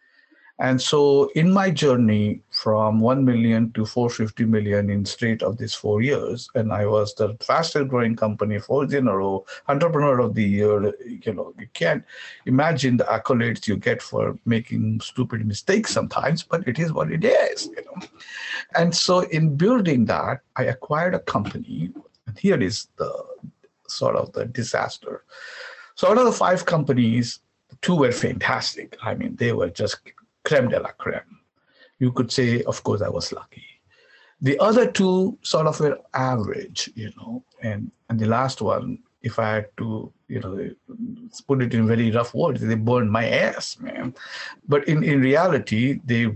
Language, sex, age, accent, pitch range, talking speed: English, male, 50-69, Indian, 115-170 Hz, 170 wpm